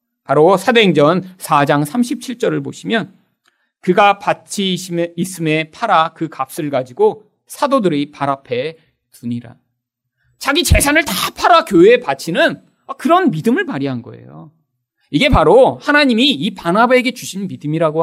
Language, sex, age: Korean, male, 40-59